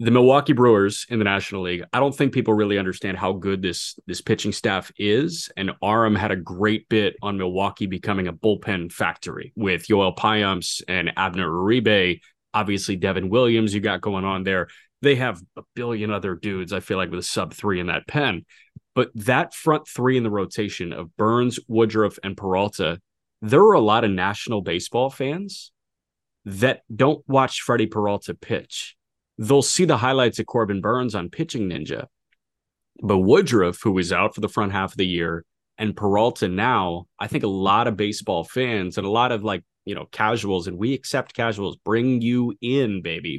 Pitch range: 95-125 Hz